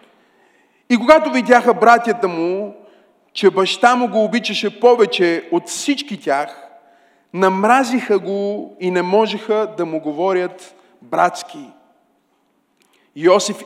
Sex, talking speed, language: male, 105 wpm, Bulgarian